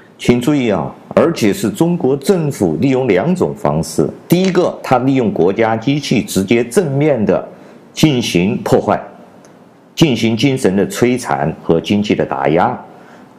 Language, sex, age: Chinese, male, 50-69